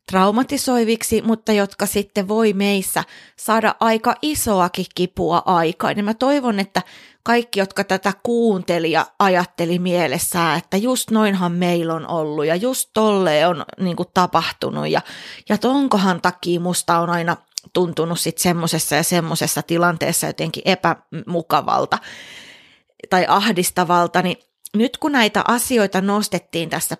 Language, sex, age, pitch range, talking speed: Finnish, female, 20-39, 175-225 Hz, 125 wpm